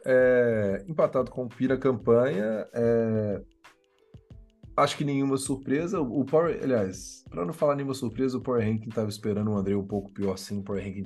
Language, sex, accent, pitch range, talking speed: Portuguese, male, Brazilian, 95-135 Hz, 180 wpm